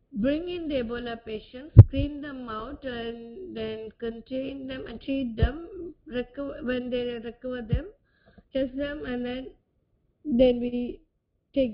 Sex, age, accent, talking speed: female, 20-39, Indian, 135 wpm